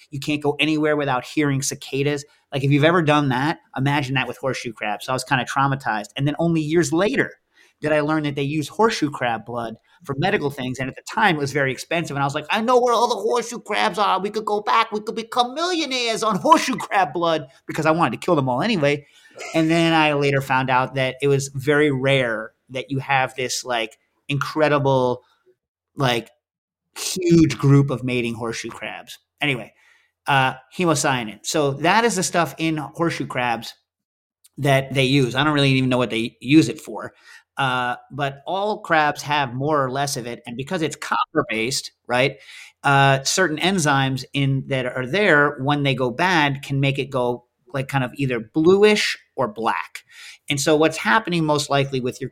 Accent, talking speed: American, 200 wpm